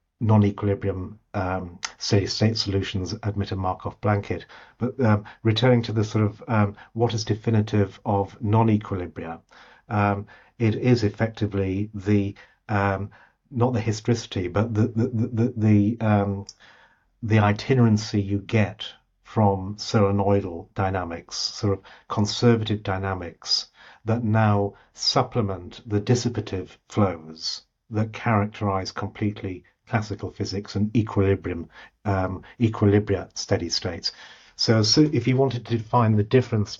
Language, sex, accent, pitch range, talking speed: English, male, British, 100-110 Hz, 115 wpm